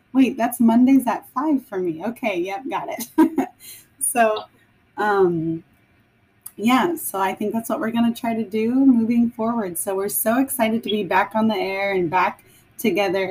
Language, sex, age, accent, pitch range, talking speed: English, female, 20-39, American, 175-235 Hz, 180 wpm